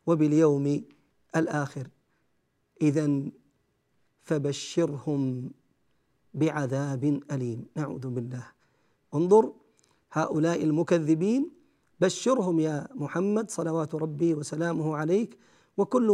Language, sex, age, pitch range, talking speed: Arabic, male, 40-59, 155-195 Hz, 70 wpm